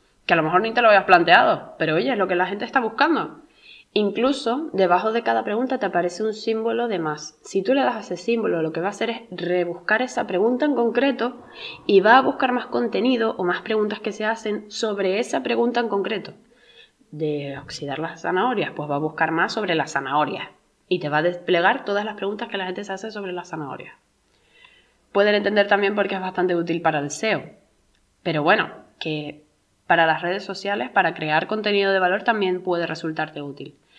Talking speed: 210 wpm